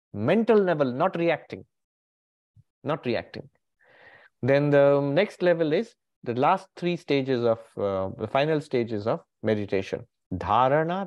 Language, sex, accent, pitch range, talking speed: English, male, Indian, 105-145 Hz, 125 wpm